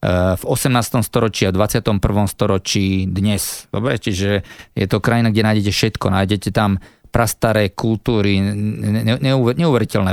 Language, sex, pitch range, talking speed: Slovak, male, 100-115 Hz, 115 wpm